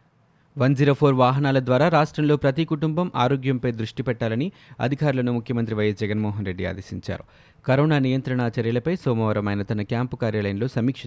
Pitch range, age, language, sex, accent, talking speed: 115-145 Hz, 30-49, Telugu, male, native, 140 wpm